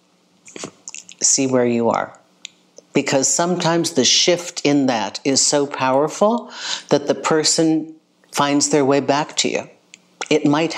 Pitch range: 130-160 Hz